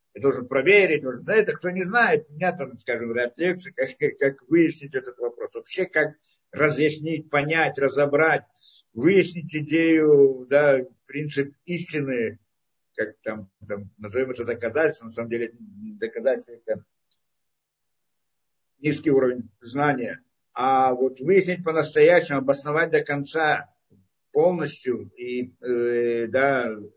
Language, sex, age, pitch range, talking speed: Russian, male, 50-69, 140-200 Hz, 120 wpm